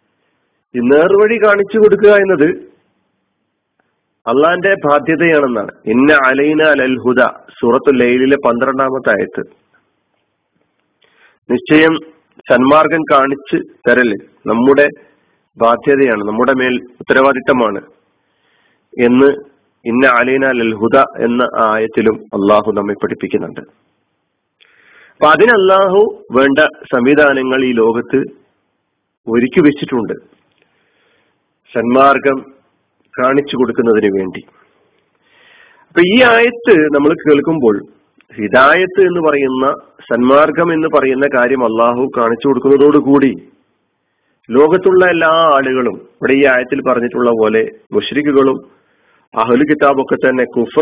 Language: Malayalam